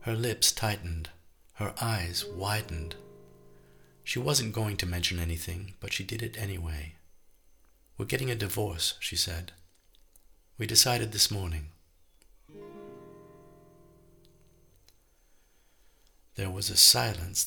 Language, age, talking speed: English, 50-69, 105 wpm